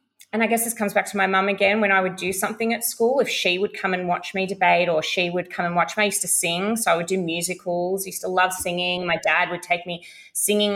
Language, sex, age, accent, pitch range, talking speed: English, female, 20-39, Australian, 180-220 Hz, 285 wpm